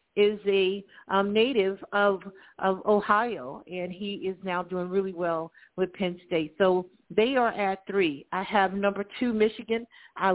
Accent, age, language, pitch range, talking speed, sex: American, 50-69, English, 180-220 Hz, 160 wpm, female